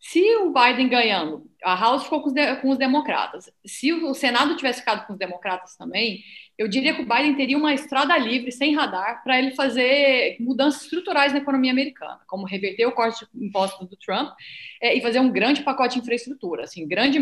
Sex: female